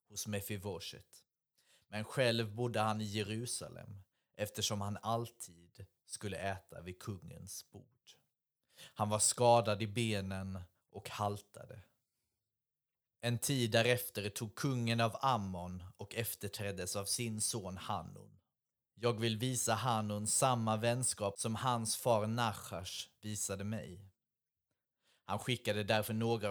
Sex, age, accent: male, 30-49, native